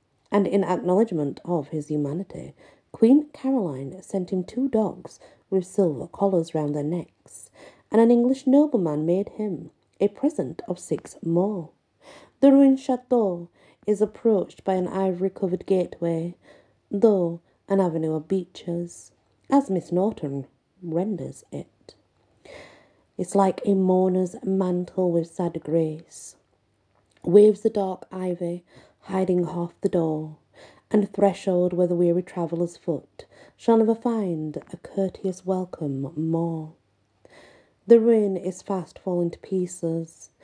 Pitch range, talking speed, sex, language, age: 160-195 Hz, 125 wpm, female, English, 40-59